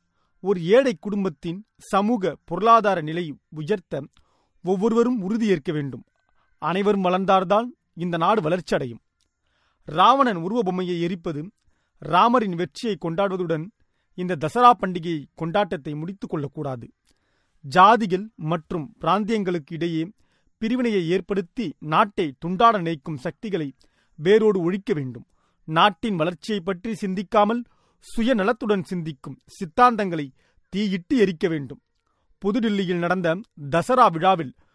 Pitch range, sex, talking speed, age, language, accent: 165-210 Hz, male, 95 wpm, 30-49, Tamil, native